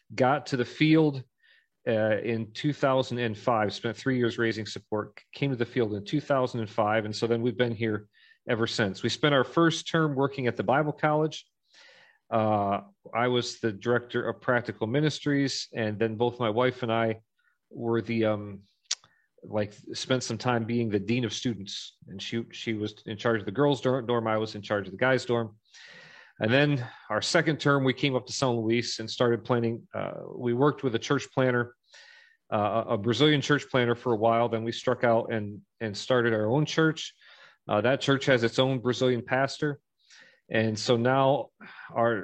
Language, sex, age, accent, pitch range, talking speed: English, male, 40-59, American, 115-135 Hz, 190 wpm